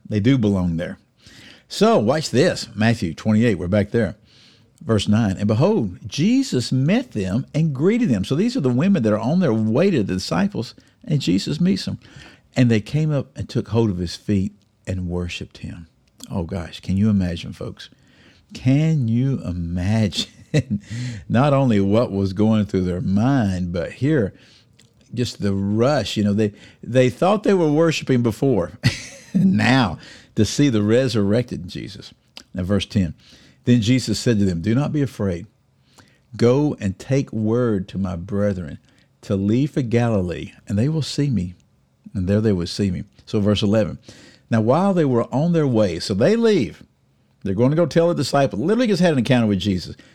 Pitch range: 100-135 Hz